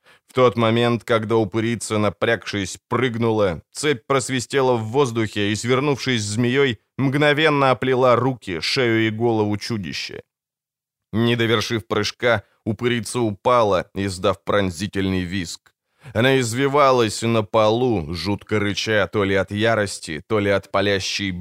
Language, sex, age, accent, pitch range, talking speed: Ukrainian, male, 20-39, native, 100-130 Hz, 120 wpm